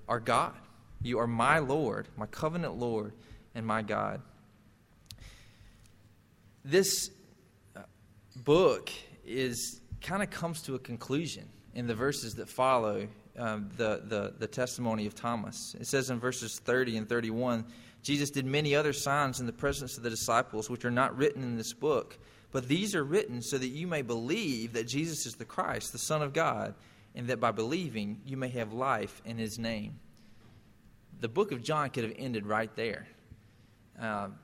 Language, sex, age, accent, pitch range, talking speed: English, male, 20-39, American, 110-140 Hz, 170 wpm